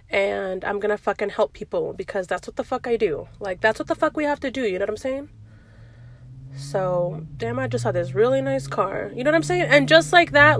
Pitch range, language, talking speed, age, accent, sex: 180-235 Hz, English, 255 wpm, 30-49, American, female